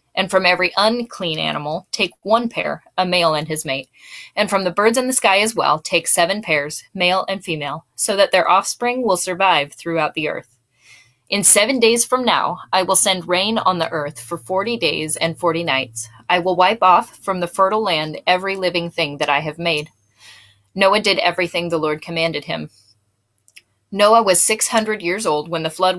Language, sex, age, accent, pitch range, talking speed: English, female, 20-39, American, 160-205 Hz, 195 wpm